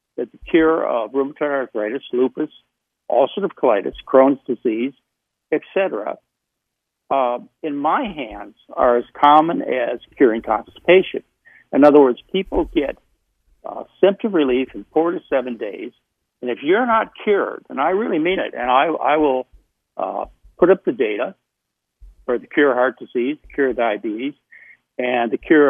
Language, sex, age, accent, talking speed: English, male, 60-79, American, 155 wpm